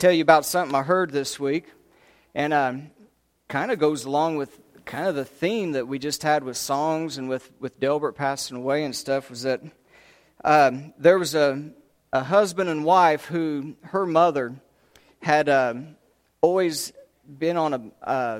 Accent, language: American, English